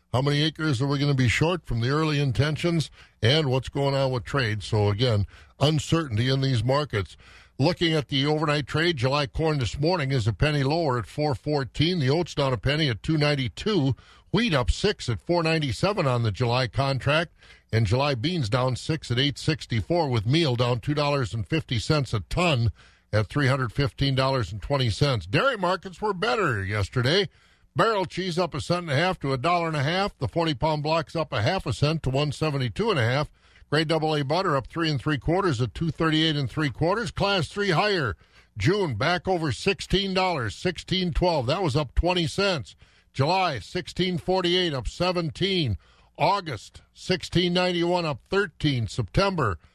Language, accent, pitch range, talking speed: English, American, 125-170 Hz, 165 wpm